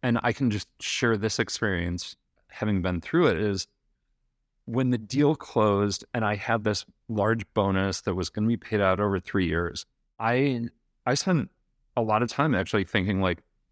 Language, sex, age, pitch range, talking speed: English, male, 30-49, 100-120 Hz, 185 wpm